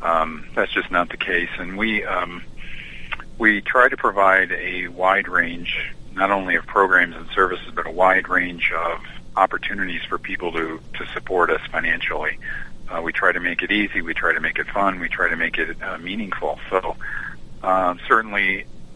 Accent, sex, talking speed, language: American, male, 185 wpm, English